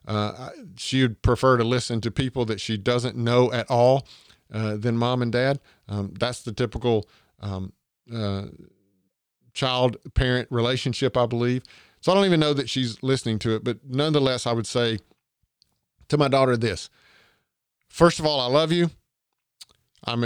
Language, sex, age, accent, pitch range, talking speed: English, male, 50-69, American, 110-135 Hz, 165 wpm